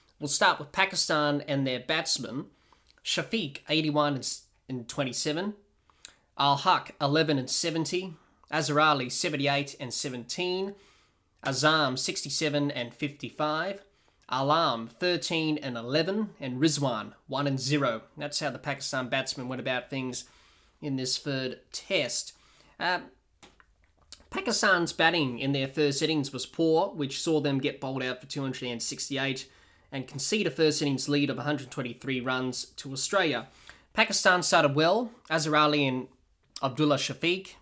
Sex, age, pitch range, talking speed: male, 20-39, 130-160 Hz, 140 wpm